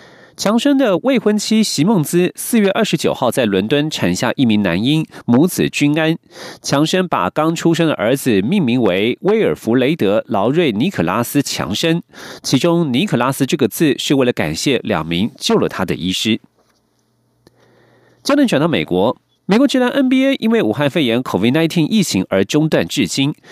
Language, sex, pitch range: German, male, 135-180 Hz